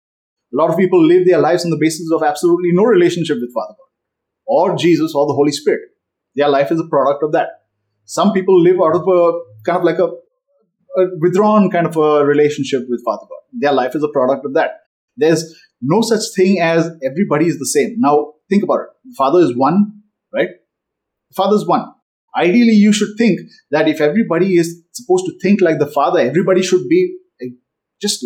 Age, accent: 30-49, Indian